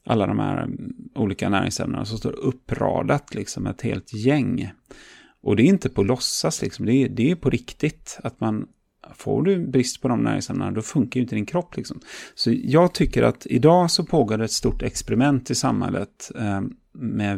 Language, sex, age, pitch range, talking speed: Swedish, male, 30-49, 110-135 Hz, 190 wpm